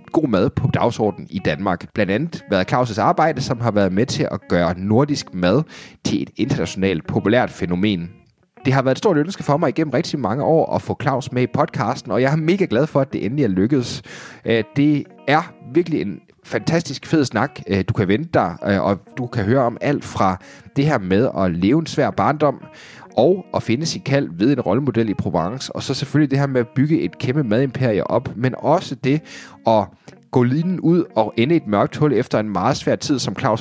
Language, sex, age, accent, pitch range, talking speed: Danish, male, 30-49, native, 105-150 Hz, 220 wpm